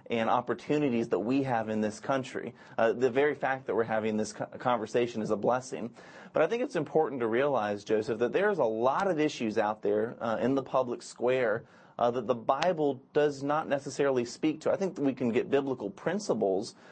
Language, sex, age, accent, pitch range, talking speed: English, male, 30-49, American, 120-145 Hz, 200 wpm